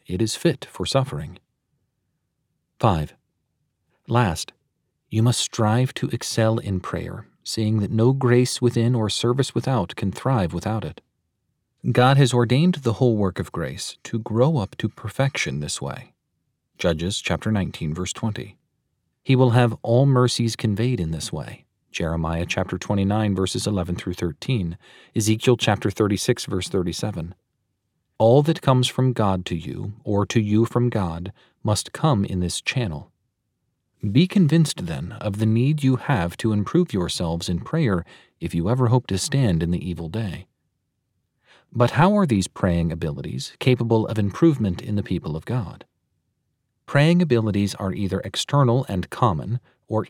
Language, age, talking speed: English, 40-59, 155 wpm